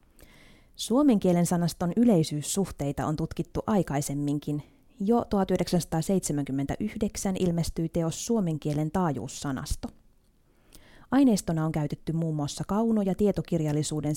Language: Finnish